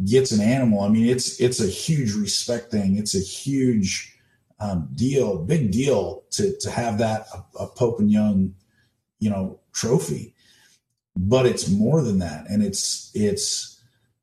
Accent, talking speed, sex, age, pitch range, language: American, 155 wpm, male, 40-59, 105-125 Hz, English